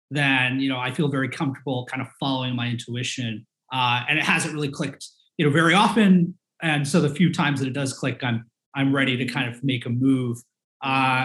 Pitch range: 135-175 Hz